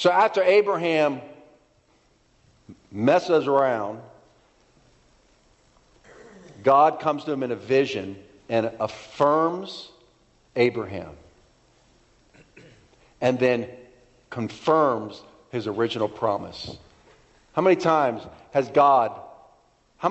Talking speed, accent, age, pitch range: 80 wpm, American, 50-69, 120-155 Hz